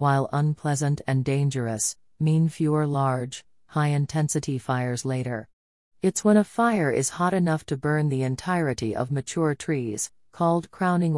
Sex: female